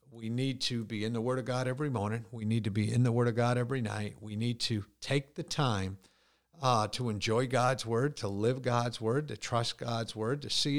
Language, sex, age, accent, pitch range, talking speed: English, male, 50-69, American, 115-155 Hz, 240 wpm